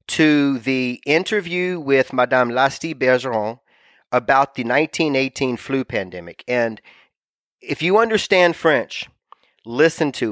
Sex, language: male, English